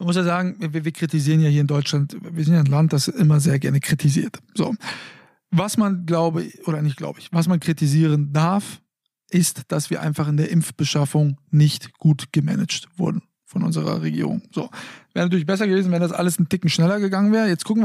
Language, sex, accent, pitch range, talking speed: German, male, German, 160-190 Hz, 210 wpm